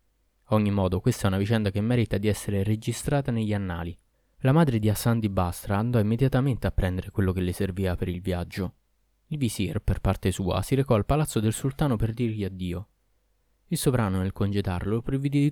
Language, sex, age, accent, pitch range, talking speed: Italian, male, 20-39, native, 95-120 Hz, 195 wpm